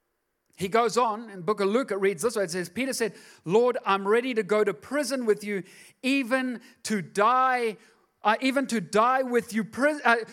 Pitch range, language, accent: 165-260 Hz, English, Australian